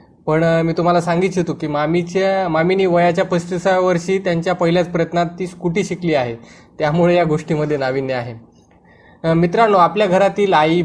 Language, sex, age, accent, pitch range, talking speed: Marathi, male, 20-39, native, 150-185 Hz, 160 wpm